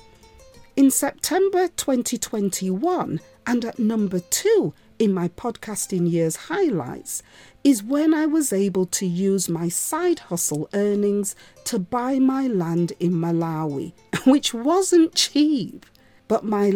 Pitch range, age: 185-280 Hz, 40-59